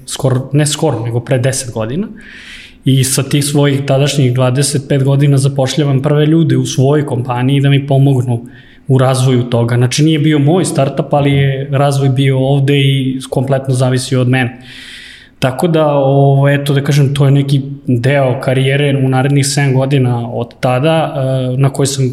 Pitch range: 130-140 Hz